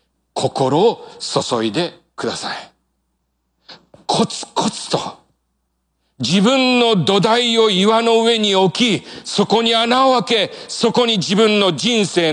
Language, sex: Japanese, male